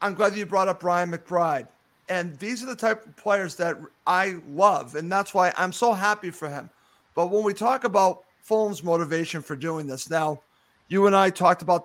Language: English